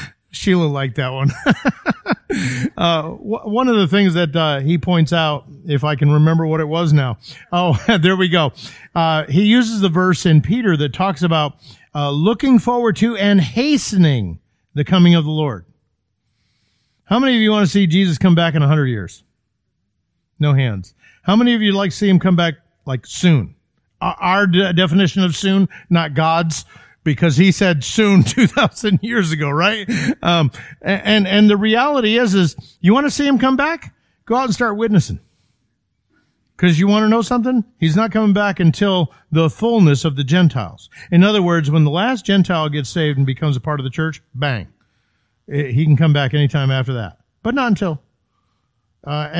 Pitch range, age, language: 145-200 Hz, 50-69, English